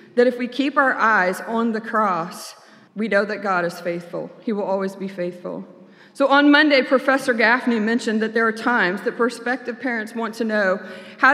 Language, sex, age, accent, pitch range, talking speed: English, female, 40-59, American, 200-255 Hz, 195 wpm